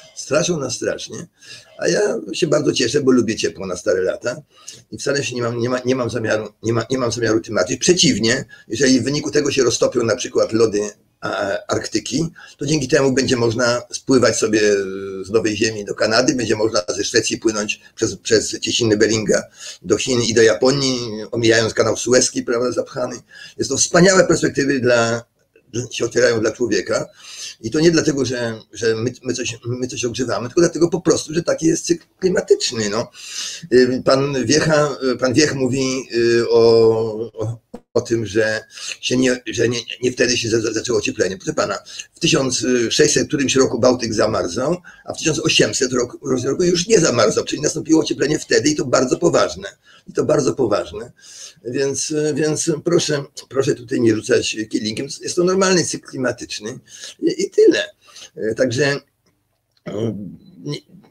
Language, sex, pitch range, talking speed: Polish, male, 115-155 Hz, 160 wpm